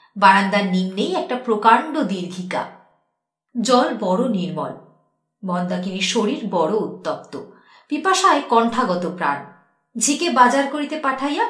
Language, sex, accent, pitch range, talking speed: Bengali, female, native, 170-265 Hz, 100 wpm